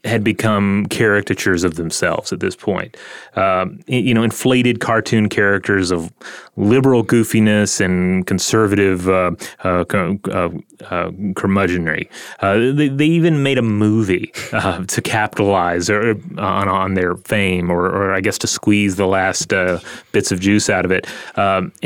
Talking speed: 150 wpm